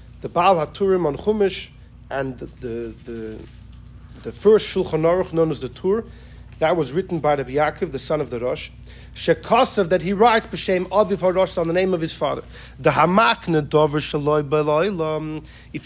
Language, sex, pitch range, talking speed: English, male, 150-200 Hz, 175 wpm